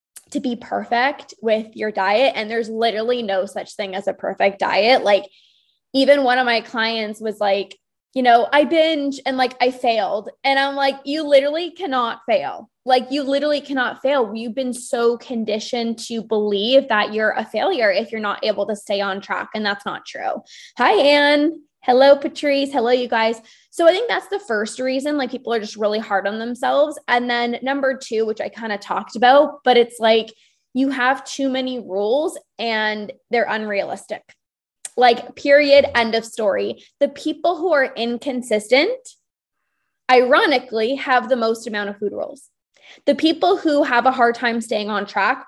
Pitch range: 225-280 Hz